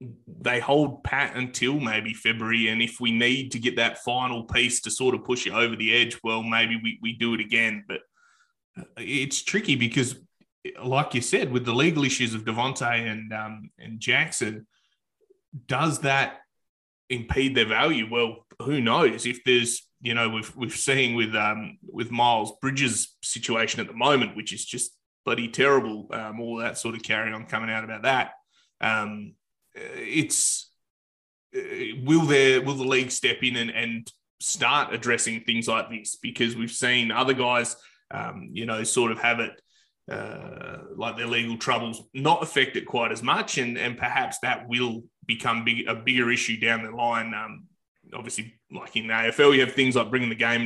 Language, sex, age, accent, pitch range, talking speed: English, male, 20-39, Australian, 115-135 Hz, 180 wpm